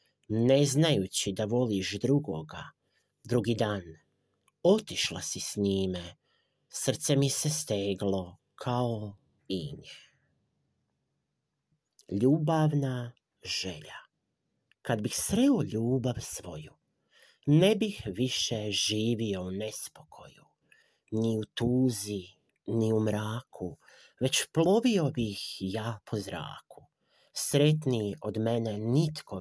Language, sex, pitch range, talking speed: Croatian, male, 105-145 Hz, 95 wpm